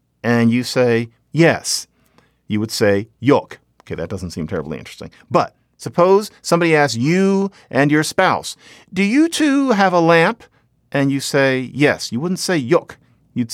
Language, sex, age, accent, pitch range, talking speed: English, male, 50-69, American, 115-170 Hz, 165 wpm